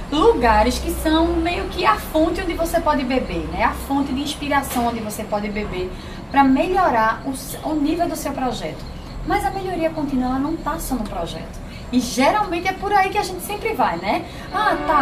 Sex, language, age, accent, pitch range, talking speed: female, Portuguese, 20-39, Brazilian, 250-345 Hz, 210 wpm